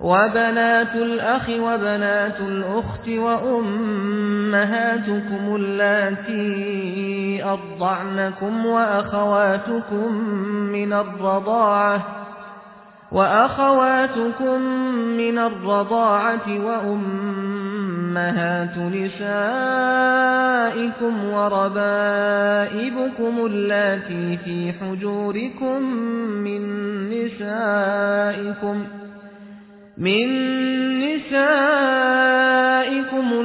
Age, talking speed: 30-49, 40 wpm